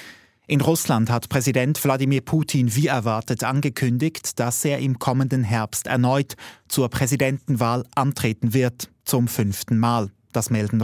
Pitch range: 115-140 Hz